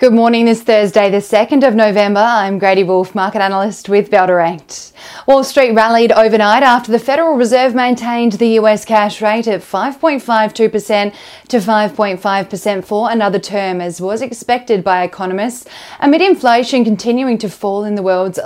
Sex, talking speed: female, 155 wpm